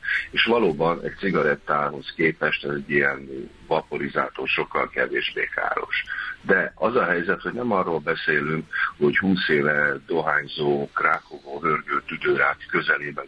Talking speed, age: 125 wpm, 50-69